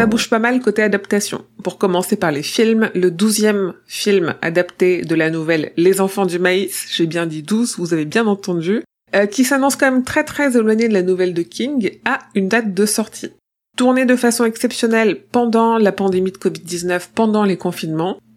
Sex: female